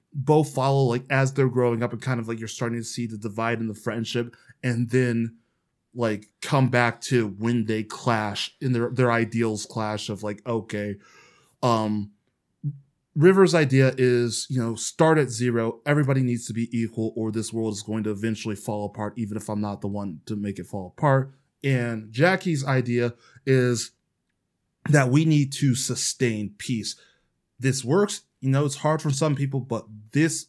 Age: 20-39